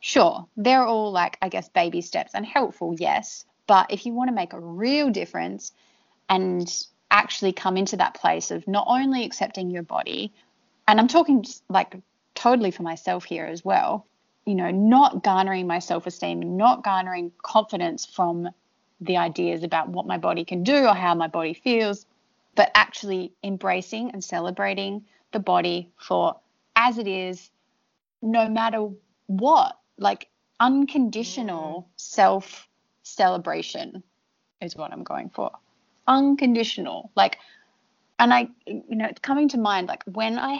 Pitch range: 175-235 Hz